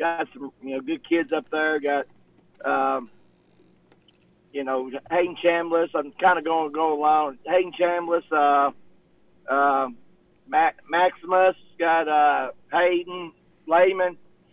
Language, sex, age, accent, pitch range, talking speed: English, male, 50-69, American, 145-180 Hz, 130 wpm